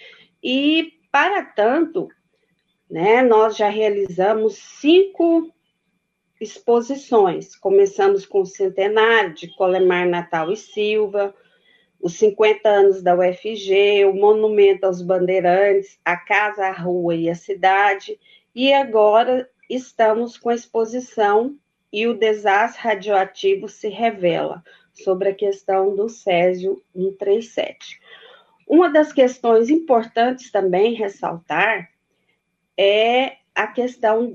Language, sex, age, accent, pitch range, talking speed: Portuguese, female, 40-59, Brazilian, 195-265 Hz, 105 wpm